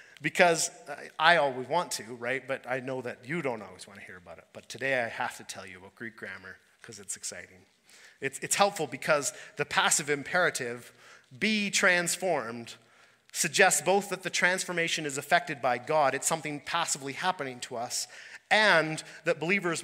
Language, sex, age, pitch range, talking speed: English, male, 30-49, 150-190 Hz, 175 wpm